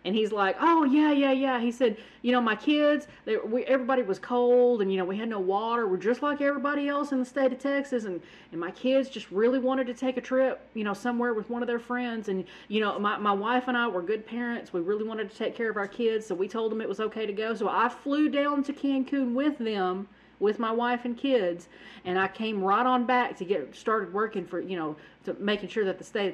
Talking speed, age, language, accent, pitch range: 255 wpm, 40-59, English, American, 195-255 Hz